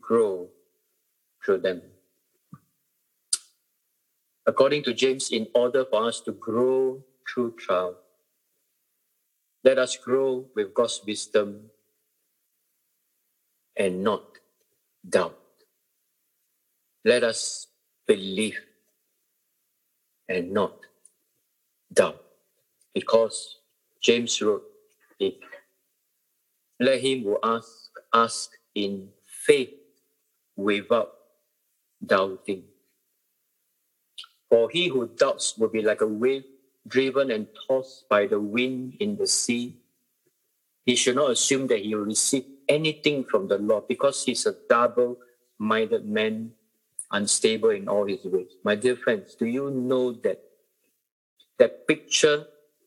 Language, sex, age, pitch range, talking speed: English, male, 50-69, 115-150 Hz, 100 wpm